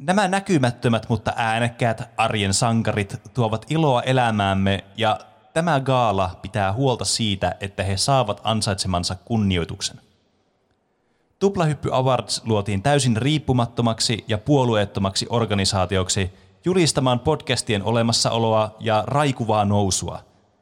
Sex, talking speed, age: male, 100 wpm, 30-49